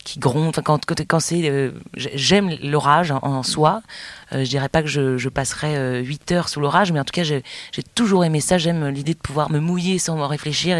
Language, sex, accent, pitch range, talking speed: French, female, French, 130-165 Hz, 220 wpm